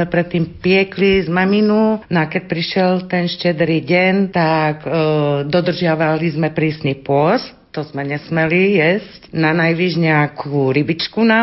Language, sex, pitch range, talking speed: Slovak, female, 155-180 Hz, 130 wpm